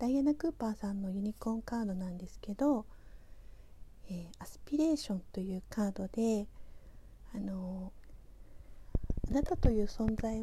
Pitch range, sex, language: 185-250 Hz, female, Japanese